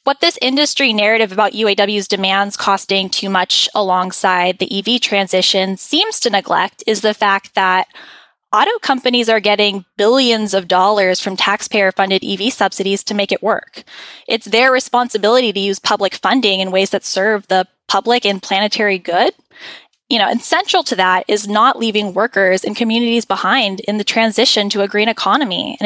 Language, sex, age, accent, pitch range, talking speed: English, female, 10-29, American, 195-235 Hz, 170 wpm